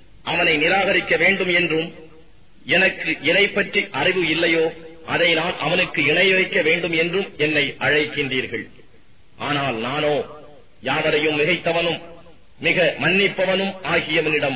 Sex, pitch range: male, 145-170 Hz